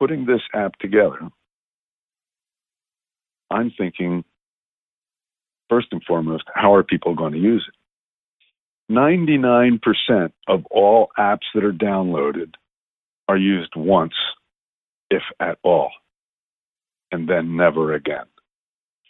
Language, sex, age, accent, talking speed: English, male, 50-69, American, 105 wpm